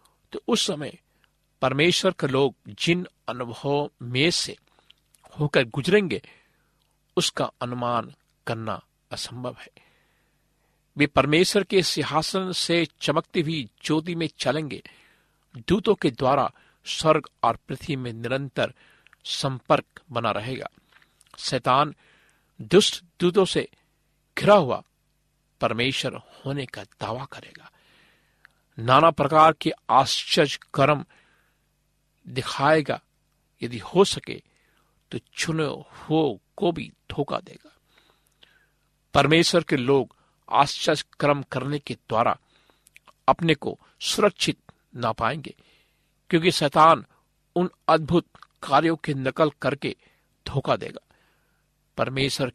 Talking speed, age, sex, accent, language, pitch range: 100 wpm, 50-69, male, native, Hindi, 130-165 Hz